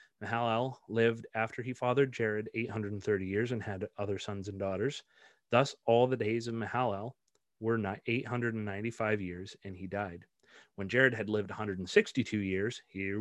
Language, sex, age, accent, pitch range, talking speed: English, male, 30-49, American, 105-125 Hz, 150 wpm